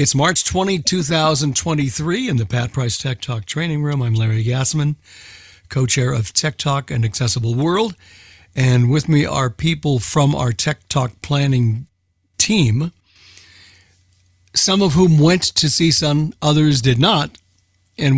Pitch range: 120-155 Hz